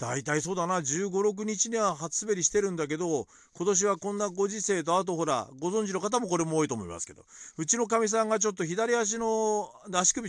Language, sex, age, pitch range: Japanese, male, 40-59, 140-225 Hz